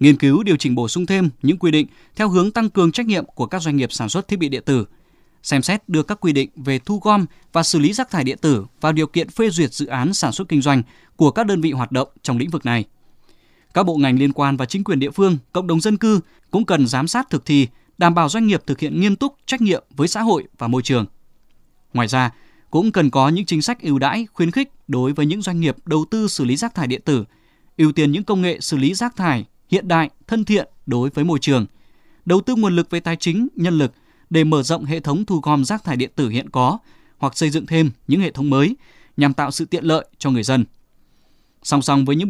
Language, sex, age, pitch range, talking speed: Vietnamese, male, 20-39, 140-190 Hz, 260 wpm